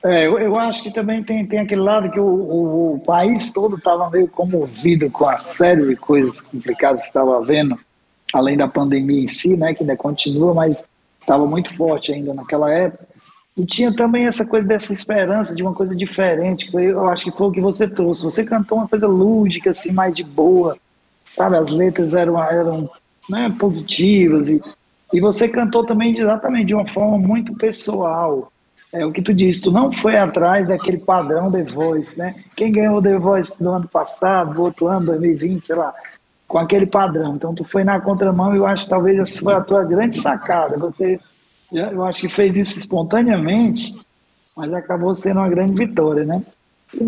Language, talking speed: Portuguese, 195 wpm